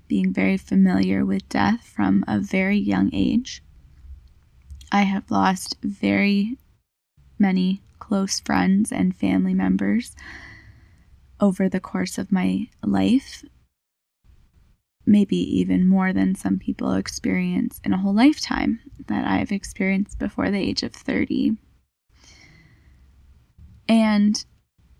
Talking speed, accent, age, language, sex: 110 wpm, American, 10-29, English, female